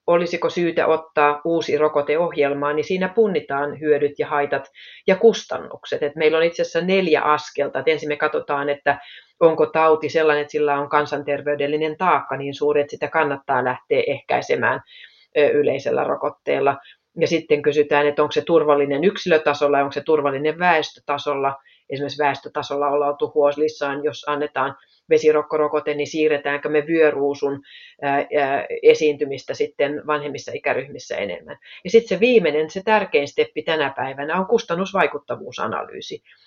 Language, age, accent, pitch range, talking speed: Finnish, 30-49, native, 145-180 Hz, 135 wpm